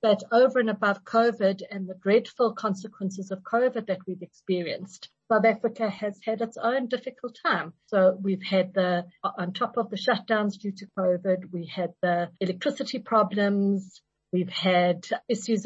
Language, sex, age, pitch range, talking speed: English, female, 50-69, 190-230 Hz, 160 wpm